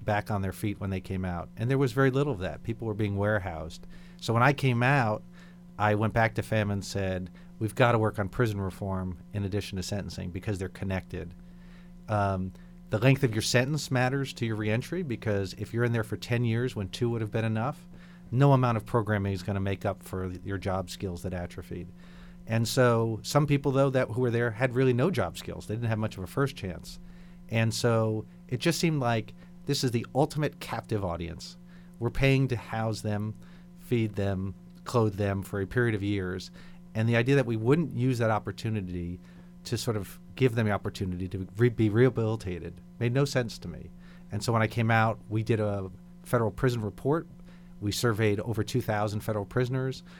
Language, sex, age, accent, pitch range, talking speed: English, male, 40-59, American, 100-130 Hz, 210 wpm